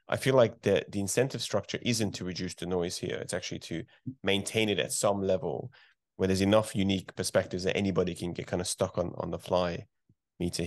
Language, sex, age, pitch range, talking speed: English, male, 20-39, 90-105 Hz, 215 wpm